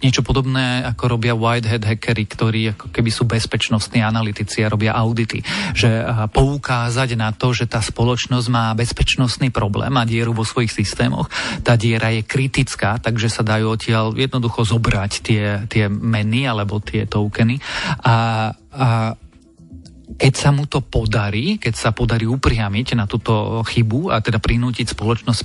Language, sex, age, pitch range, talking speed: Slovak, male, 40-59, 110-125 Hz, 155 wpm